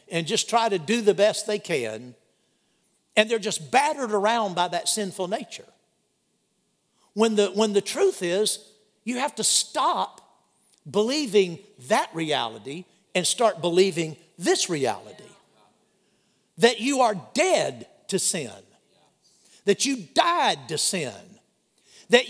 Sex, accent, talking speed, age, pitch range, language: male, American, 125 wpm, 60-79, 185-265 Hz, English